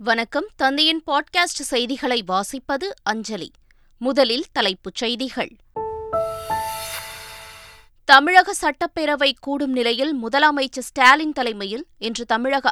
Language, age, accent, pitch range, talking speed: Tamil, 20-39, native, 220-295 Hz, 85 wpm